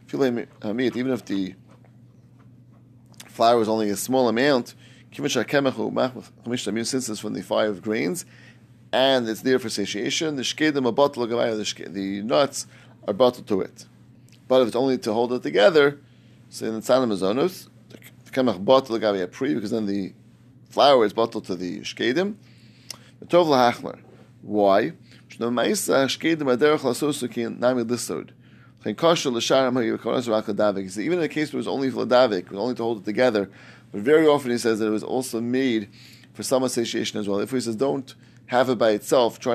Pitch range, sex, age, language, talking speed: 105-125 Hz, male, 30-49, English, 130 wpm